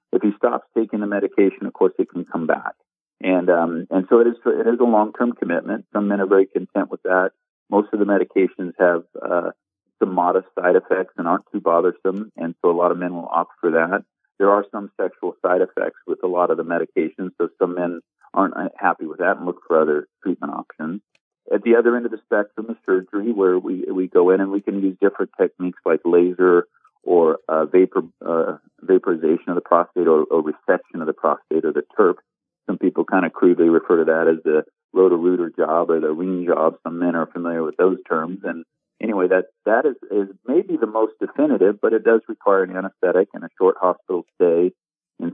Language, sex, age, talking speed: English, male, 40-59, 215 wpm